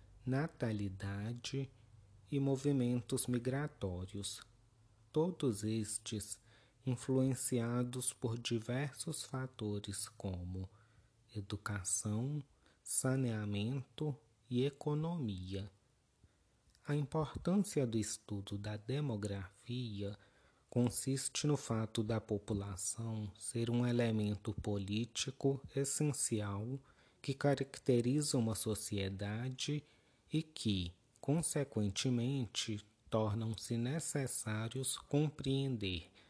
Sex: male